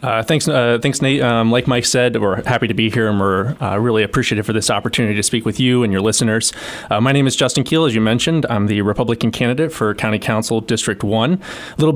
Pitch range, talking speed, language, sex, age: 110-130 Hz, 245 wpm, English, male, 30-49